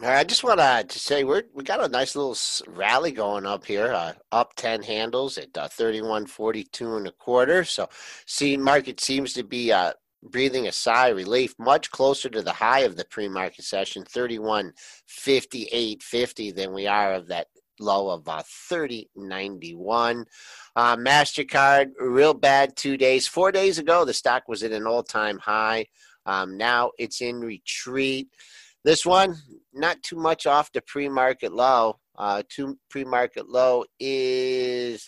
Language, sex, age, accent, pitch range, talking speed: English, male, 50-69, American, 110-150 Hz, 160 wpm